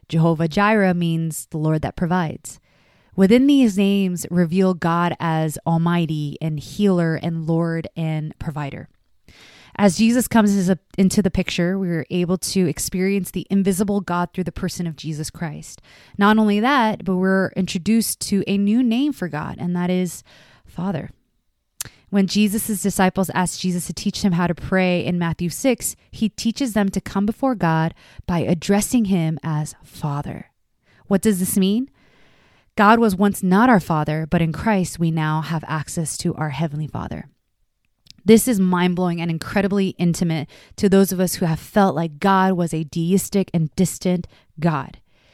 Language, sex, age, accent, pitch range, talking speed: English, female, 20-39, American, 165-200 Hz, 170 wpm